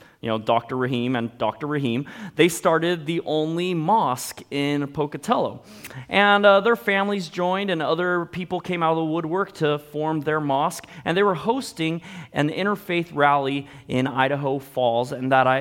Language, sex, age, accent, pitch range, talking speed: English, male, 30-49, American, 140-185 Hz, 170 wpm